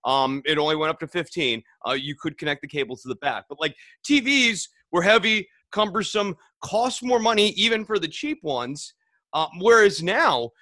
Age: 30-49